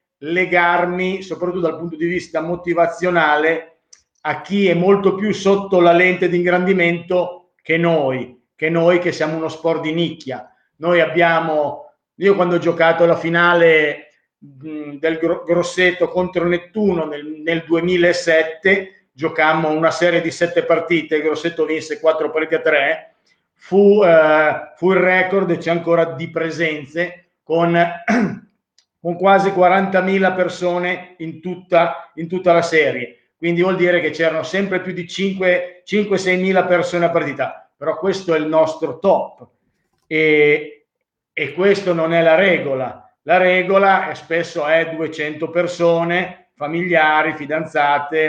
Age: 50-69